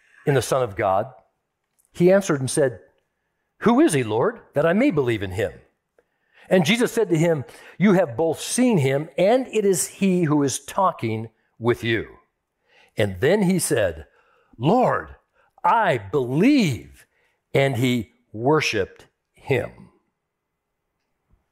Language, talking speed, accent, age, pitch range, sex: English, 135 wpm, American, 60-79, 135-210 Hz, male